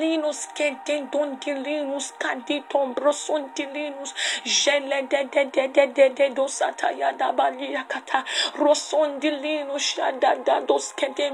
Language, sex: English, female